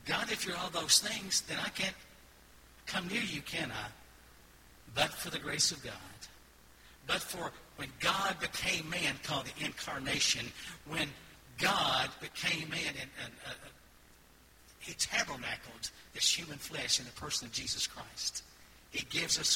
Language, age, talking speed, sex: English, 60-79, 155 wpm, male